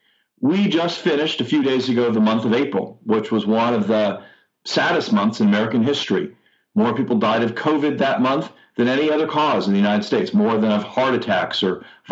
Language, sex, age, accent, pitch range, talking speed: English, male, 50-69, American, 110-150 Hz, 215 wpm